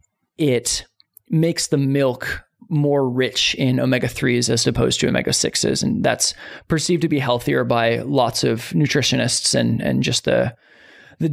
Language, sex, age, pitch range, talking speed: English, male, 20-39, 125-155 Hz, 155 wpm